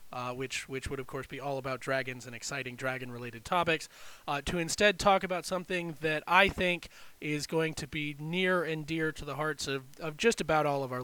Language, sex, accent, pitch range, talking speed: English, male, American, 135-180 Hz, 215 wpm